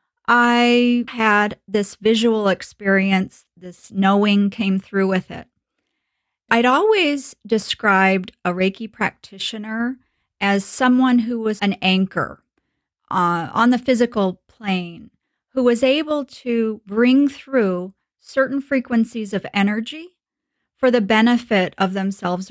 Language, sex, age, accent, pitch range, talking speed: English, female, 40-59, American, 195-265 Hz, 115 wpm